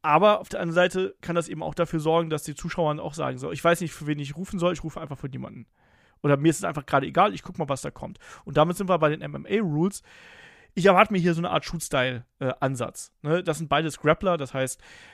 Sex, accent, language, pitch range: male, German, German, 140-175 Hz